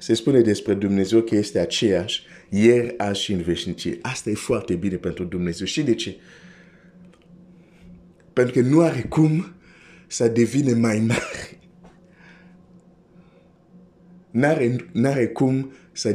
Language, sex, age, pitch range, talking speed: Romanian, male, 50-69, 110-175 Hz, 125 wpm